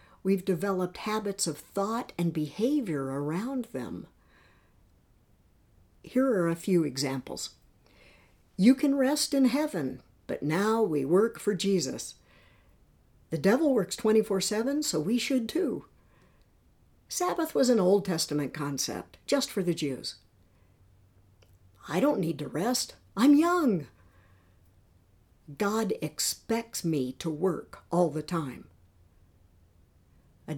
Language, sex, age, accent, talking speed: English, female, 60-79, American, 115 wpm